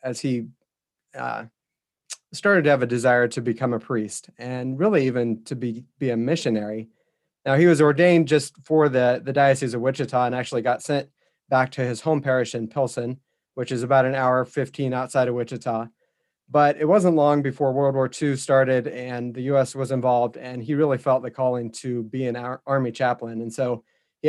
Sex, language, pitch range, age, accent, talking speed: male, English, 125-140 Hz, 30-49, American, 195 wpm